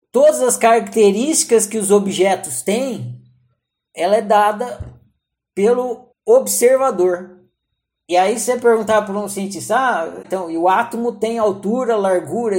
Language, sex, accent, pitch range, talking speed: Portuguese, male, Brazilian, 175-220 Hz, 130 wpm